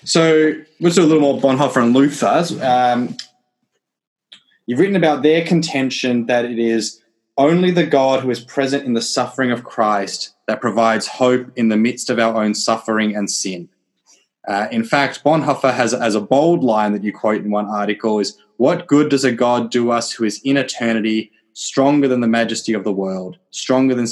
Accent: Australian